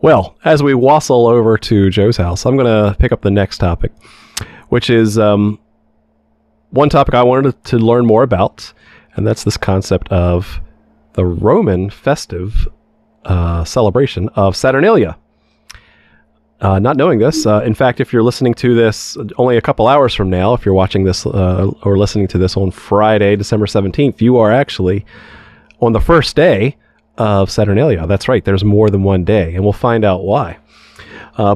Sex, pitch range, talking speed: male, 95-125 Hz, 175 wpm